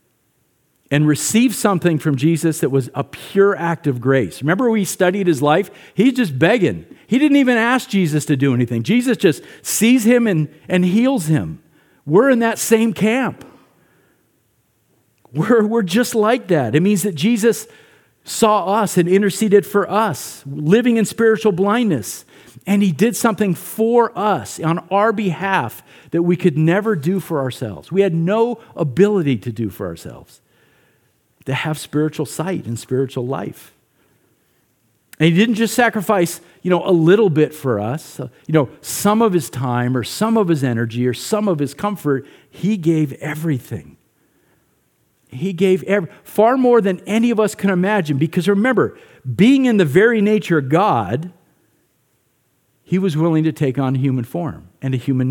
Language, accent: English, American